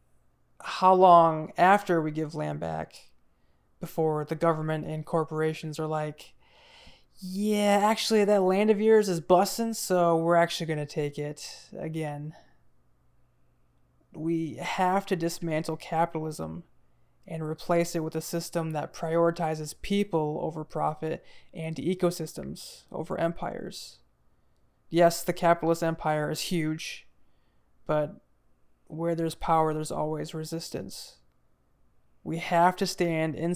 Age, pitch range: 20-39, 150-175 Hz